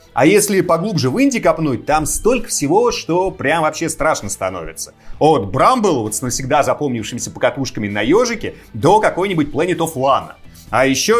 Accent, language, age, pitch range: native, Russian, 30-49, 125-200 Hz